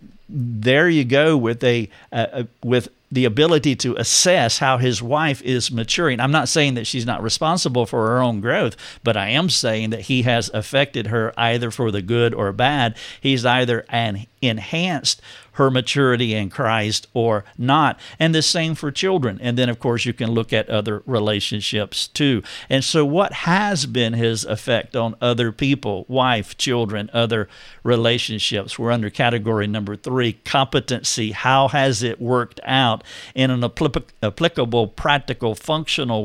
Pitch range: 115-135 Hz